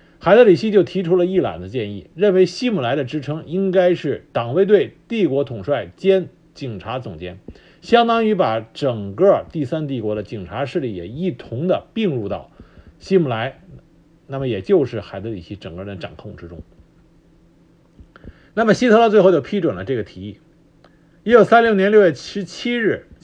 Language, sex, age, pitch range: Chinese, male, 50-69, 115-190 Hz